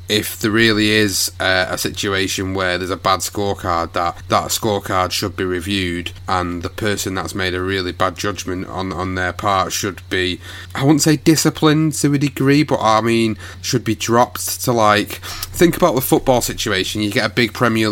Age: 30-49